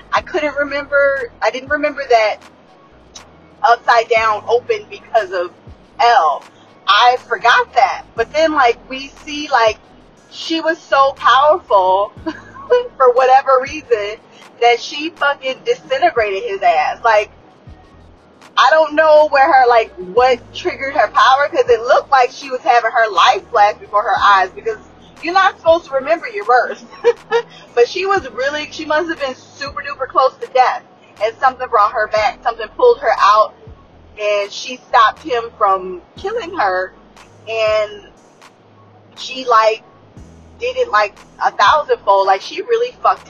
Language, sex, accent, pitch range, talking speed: English, female, American, 225-350 Hz, 150 wpm